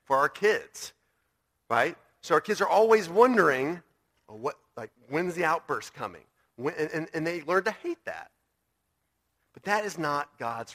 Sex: male